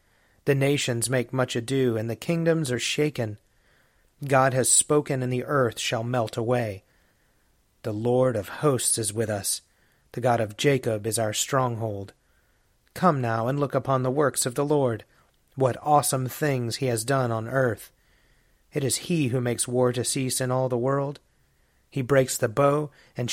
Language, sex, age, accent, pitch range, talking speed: English, male, 40-59, American, 115-140 Hz, 175 wpm